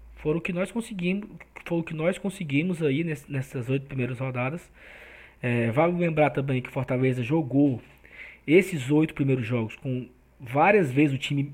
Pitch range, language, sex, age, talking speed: 140-170 Hz, Portuguese, male, 20-39, 140 wpm